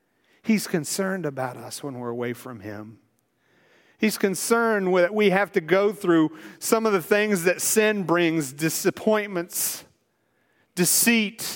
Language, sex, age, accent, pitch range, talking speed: English, male, 40-59, American, 195-255 Hz, 135 wpm